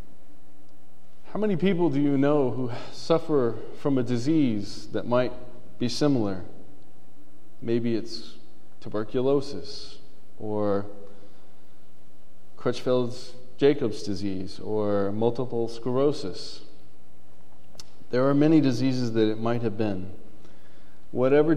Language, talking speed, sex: English, 95 wpm, male